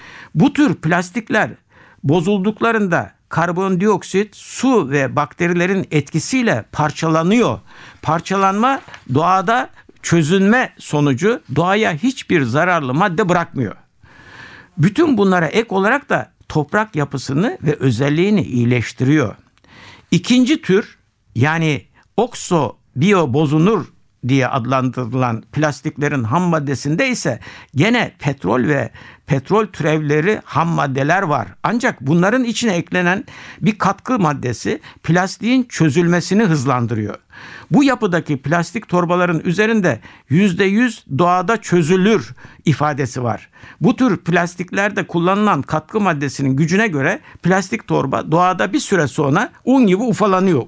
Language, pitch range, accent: Turkish, 145-205 Hz, native